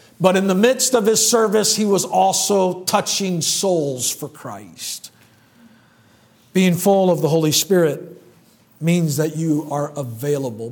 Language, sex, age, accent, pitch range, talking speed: English, male, 50-69, American, 145-180 Hz, 140 wpm